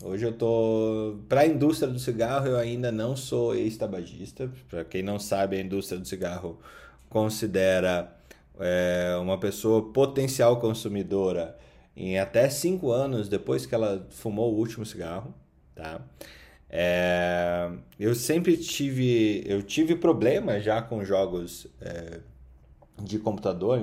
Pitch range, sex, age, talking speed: 90-115 Hz, male, 20-39, 130 wpm